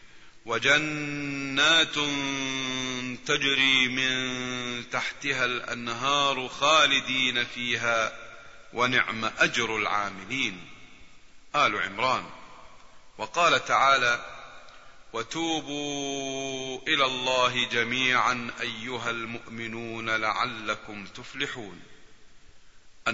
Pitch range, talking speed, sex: 115-135 Hz, 55 wpm, male